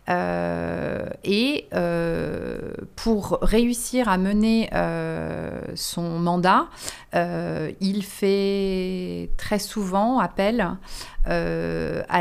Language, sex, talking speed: French, female, 90 wpm